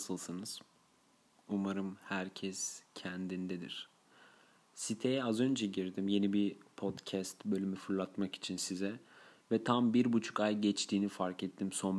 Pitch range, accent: 95-110 Hz, native